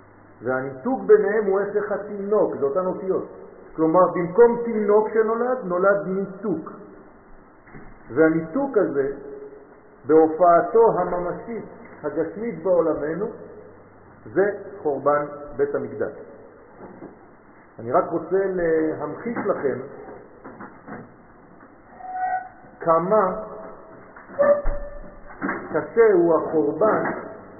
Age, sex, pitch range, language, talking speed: 50-69, male, 145-205 Hz, French, 70 wpm